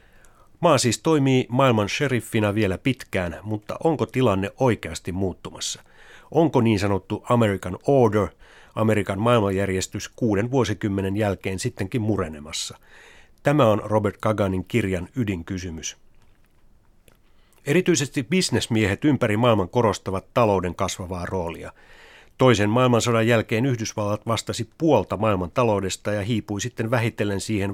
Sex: male